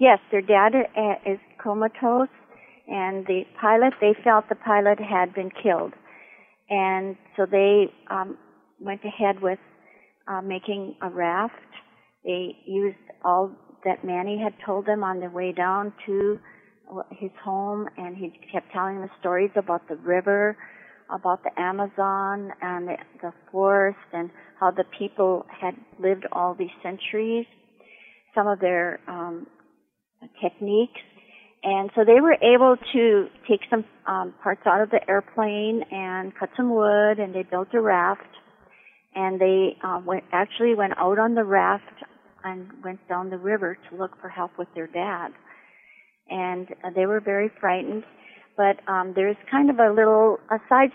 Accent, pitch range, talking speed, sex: American, 185-215 Hz, 150 wpm, female